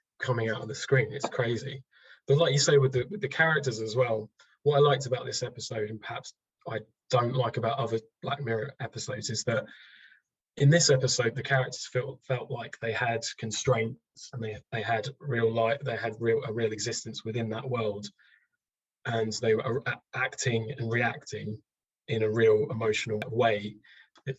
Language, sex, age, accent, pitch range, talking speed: English, male, 20-39, British, 110-135 Hz, 175 wpm